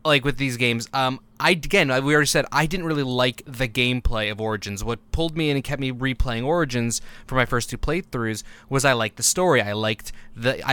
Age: 20-39